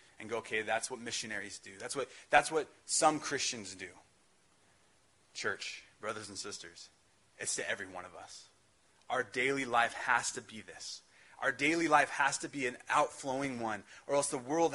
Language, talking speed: English, 175 wpm